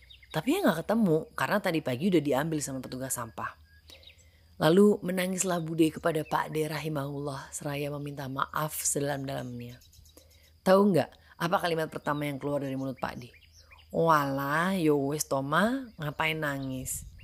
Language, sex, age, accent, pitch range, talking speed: Indonesian, female, 30-49, native, 135-185 Hz, 130 wpm